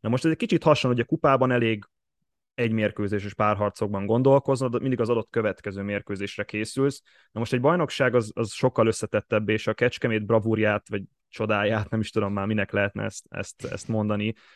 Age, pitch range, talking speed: 20-39, 100-120 Hz, 185 wpm